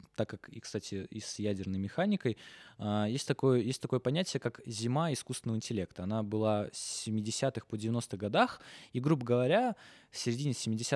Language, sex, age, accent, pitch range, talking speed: Russian, male, 20-39, native, 105-140 Hz, 155 wpm